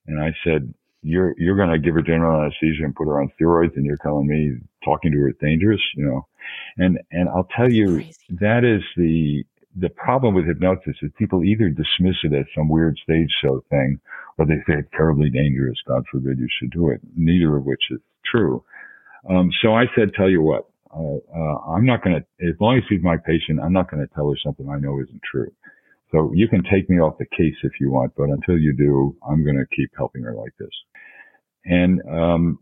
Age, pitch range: 50-69, 70-90 Hz